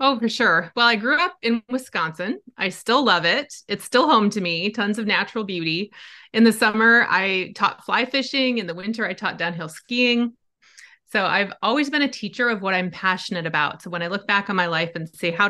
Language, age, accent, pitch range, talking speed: English, 30-49, American, 180-230 Hz, 225 wpm